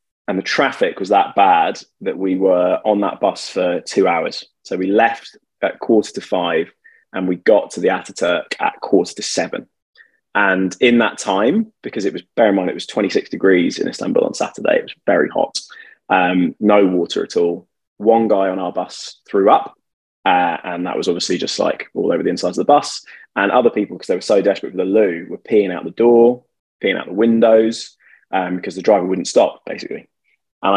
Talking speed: 210 wpm